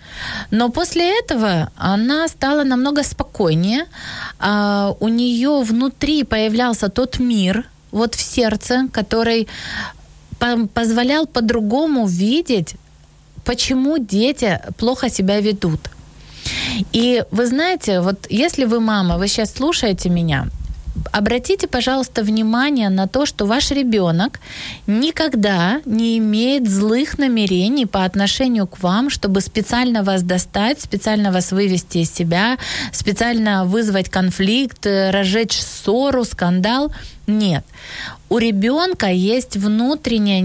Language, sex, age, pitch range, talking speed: Ukrainian, female, 20-39, 195-255 Hz, 110 wpm